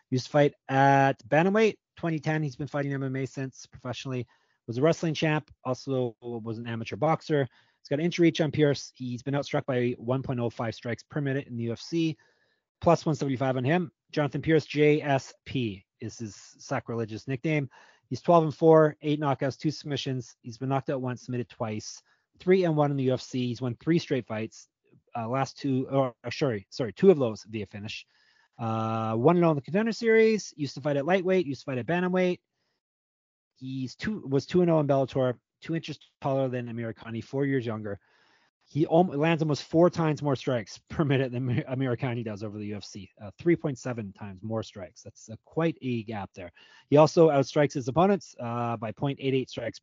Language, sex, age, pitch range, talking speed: English, male, 30-49, 120-155 Hz, 190 wpm